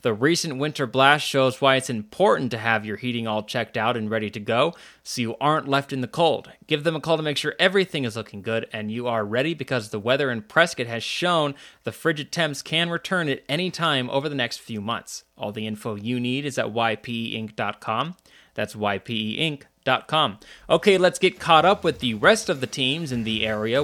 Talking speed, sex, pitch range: 215 wpm, male, 110-150 Hz